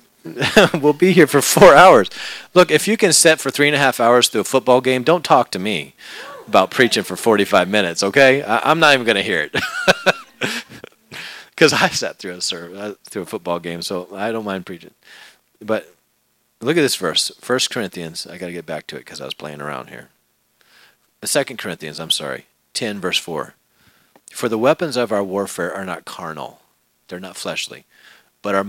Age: 40-59